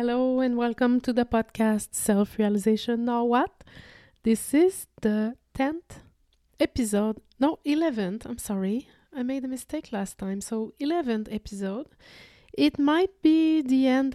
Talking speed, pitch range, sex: 135 wpm, 200-255 Hz, female